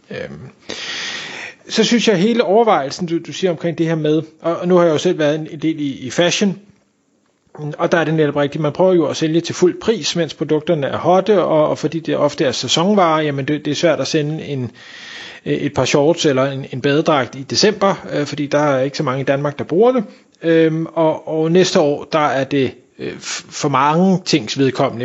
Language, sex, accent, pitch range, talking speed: Danish, male, native, 135-165 Hz, 210 wpm